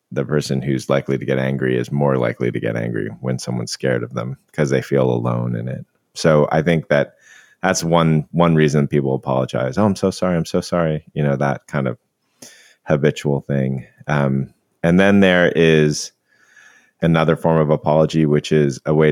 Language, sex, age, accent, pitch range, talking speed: English, male, 30-49, American, 65-75 Hz, 190 wpm